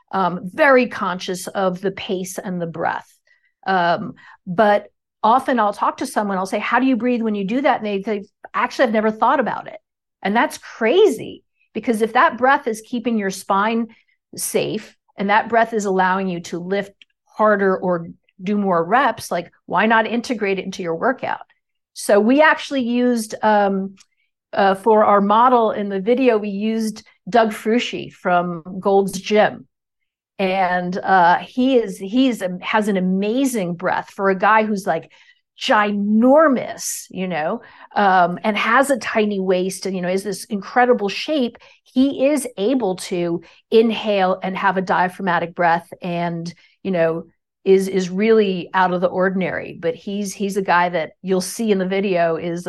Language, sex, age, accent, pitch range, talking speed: English, female, 50-69, American, 185-235 Hz, 170 wpm